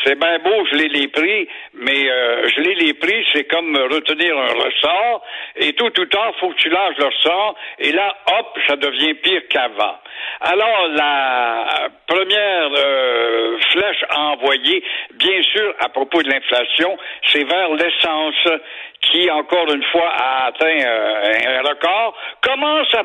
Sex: male